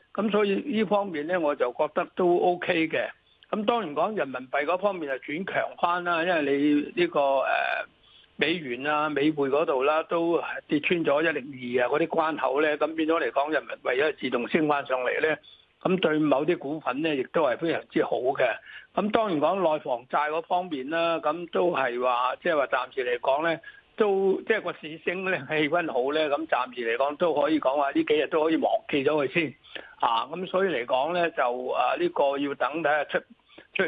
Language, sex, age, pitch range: Chinese, male, 60-79, 150-185 Hz